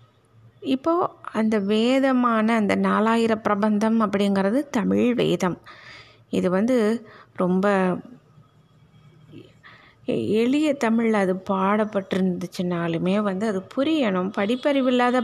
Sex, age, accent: female, 20-39, native